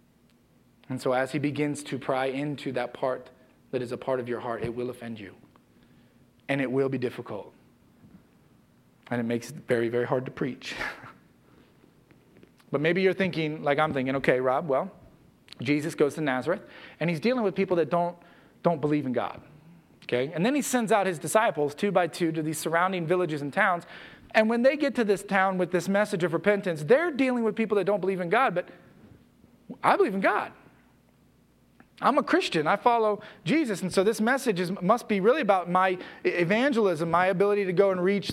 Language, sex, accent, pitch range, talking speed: English, male, American, 145-210 Hz, 195 wpm